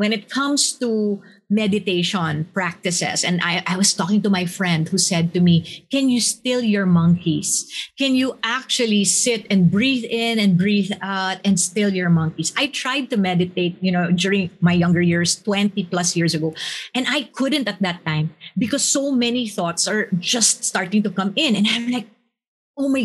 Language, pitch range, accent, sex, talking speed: English, 185-260 Hz, Filipino, female, 185 wpm